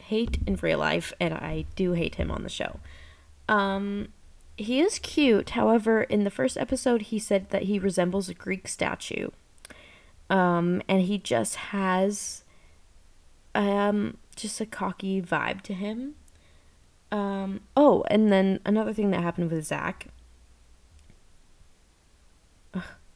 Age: 20-39